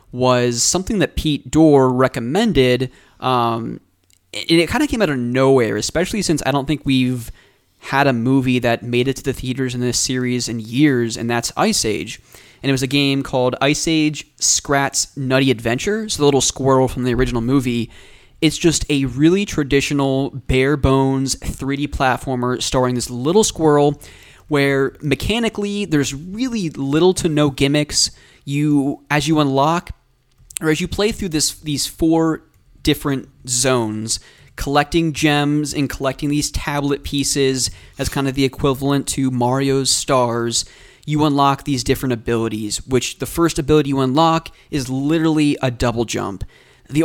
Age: 20-39